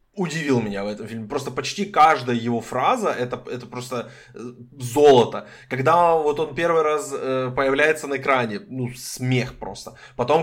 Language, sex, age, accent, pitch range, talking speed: Ukrainian, male, 20-39, native, 125-160 Hz, 155 wpm